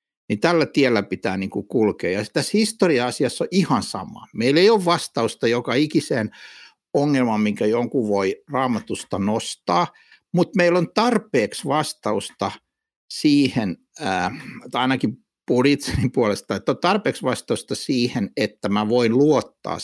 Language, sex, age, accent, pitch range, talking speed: Finnish, male, 60-79, native, 105-175 Hz, 135 wpm